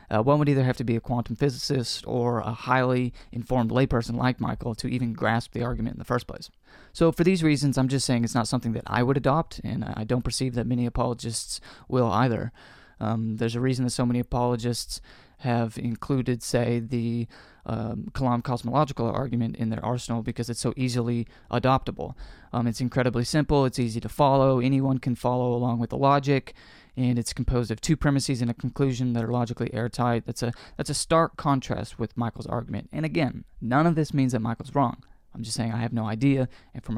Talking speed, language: 210 wpm, English